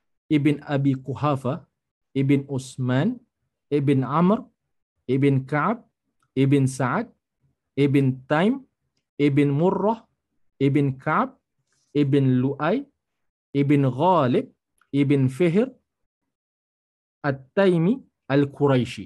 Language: English